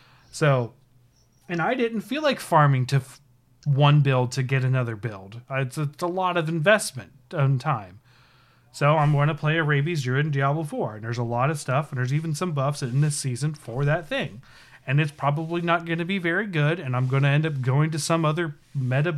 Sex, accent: male, American